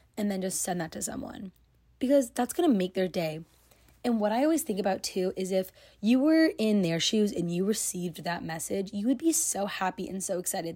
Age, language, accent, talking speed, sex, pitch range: 20-39, English, American, 230 wpm, female, 170-230 Hz